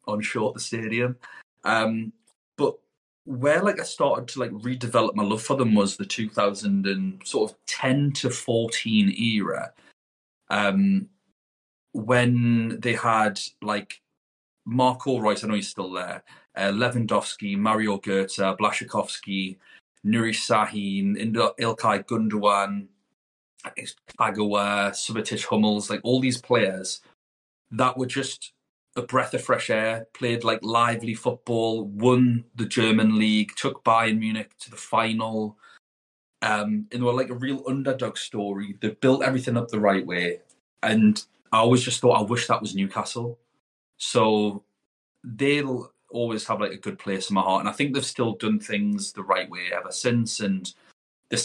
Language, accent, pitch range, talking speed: English, British, 105-125 Hz, 145 wpm